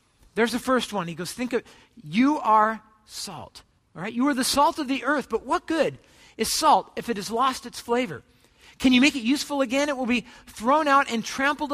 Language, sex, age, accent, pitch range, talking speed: English, male, 50-69, American, 215-280 Hz, 225 wpm